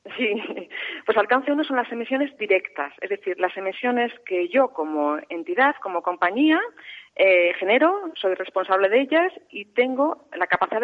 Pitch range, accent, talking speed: 175-235 Hz, Spanish, 155 wpm